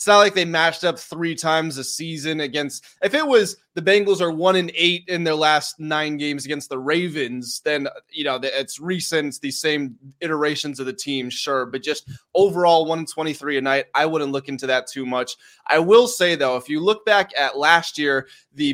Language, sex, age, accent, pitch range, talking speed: English, male, 20-39, American, 140-165 Hz, 215 wpm